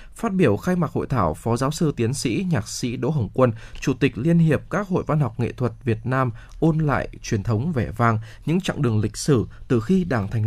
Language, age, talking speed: Vietnamese, 20-39, 245 wpm